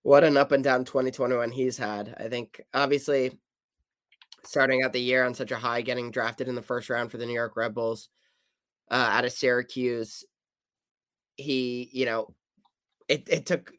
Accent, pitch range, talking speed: American, 115-130 Hz, 170 wpm